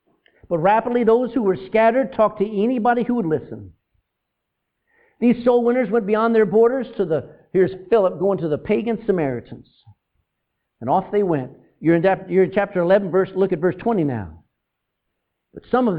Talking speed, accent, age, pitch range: 165 wpm, American, 50-69, 150-210 Hz